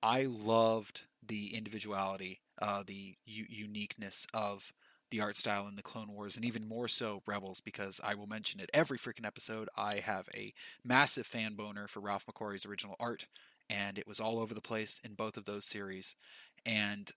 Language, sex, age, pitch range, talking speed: English, male, 20-39, 105-125 Hz, 180 wpm